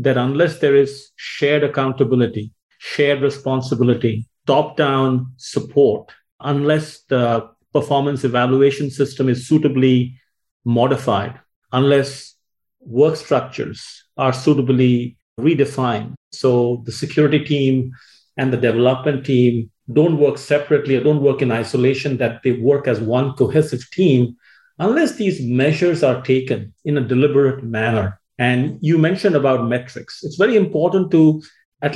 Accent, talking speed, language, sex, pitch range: Indian, 120 wpm, English, male, 130-170 Hz